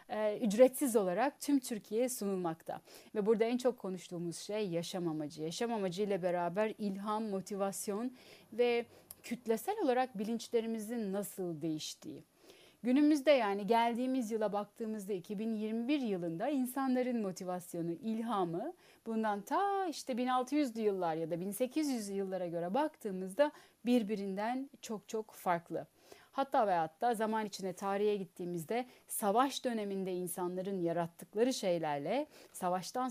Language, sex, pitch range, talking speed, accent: Turkish, female, 190-255 Hz, 115 wpm, native